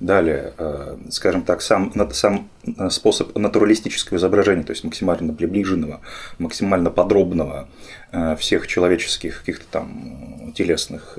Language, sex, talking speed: Russian, male, 100 wpm